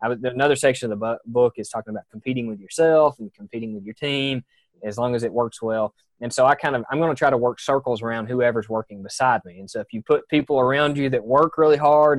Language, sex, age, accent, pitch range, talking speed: English, male, 20-39, American, 110-135 Hz, 250 wpm